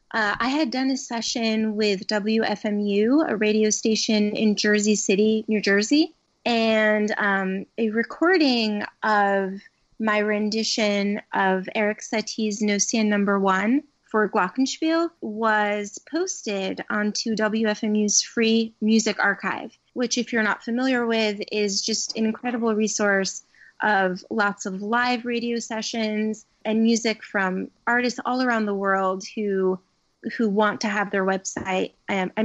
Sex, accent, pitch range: female, American, 205-235 Hz